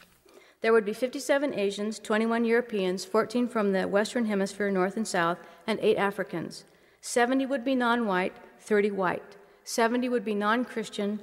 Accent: American